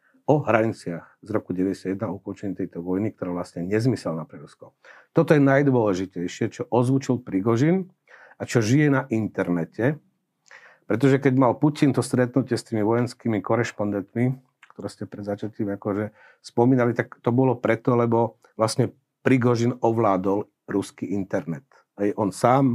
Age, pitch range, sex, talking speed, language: 50-69, 100-130 Hz, male, 140 wpm, Slovak